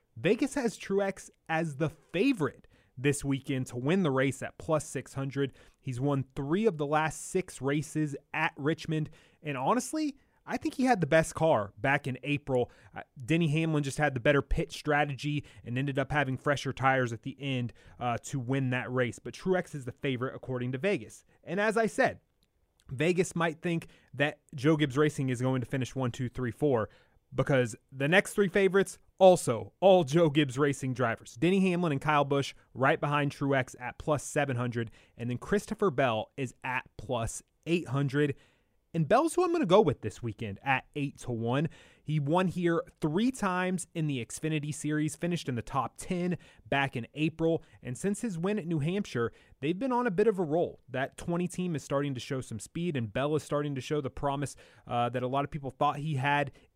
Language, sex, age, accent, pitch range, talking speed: English, male, 30-49, American, 130-165 Hz, 200 wpm